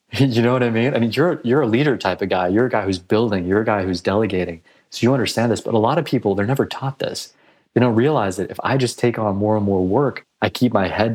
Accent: American